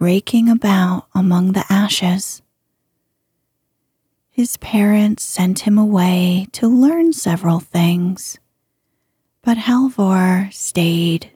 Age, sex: 30-49, female